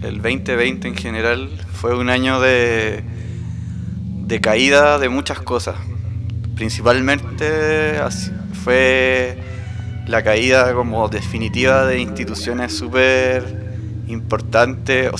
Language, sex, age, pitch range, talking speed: English, male, 20-39, 100-125 Hz, 95 wpm